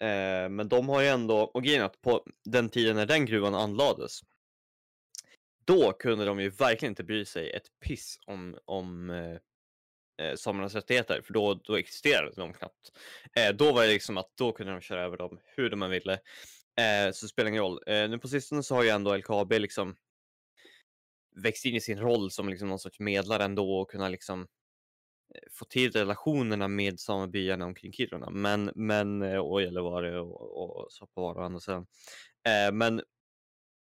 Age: 20-39